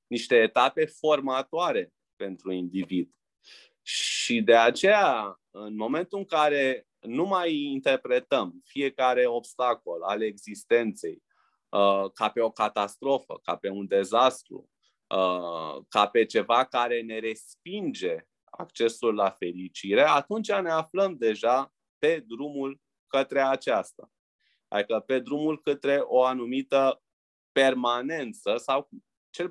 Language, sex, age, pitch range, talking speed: Romanian, male, 20-39, 115-185 Hz, 110 wpm